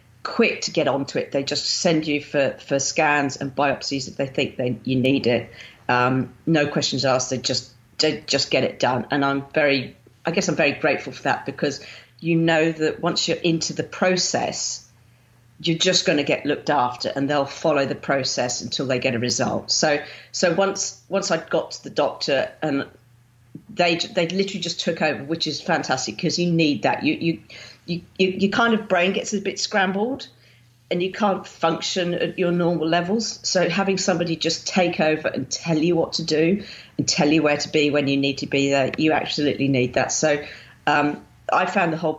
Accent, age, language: British, 40-59, English